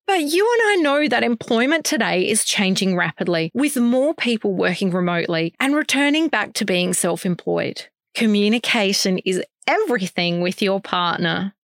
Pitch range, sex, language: 185-280 Hz, female, English